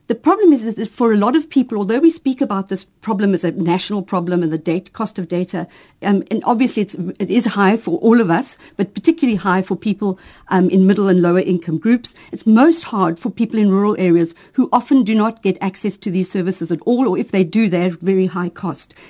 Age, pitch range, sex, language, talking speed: 50-69, 180-230 Hz, female, English, 235 wpm